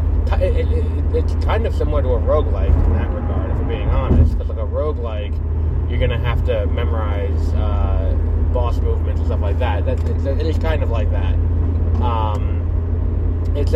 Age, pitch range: 20-39, 75-85 Hz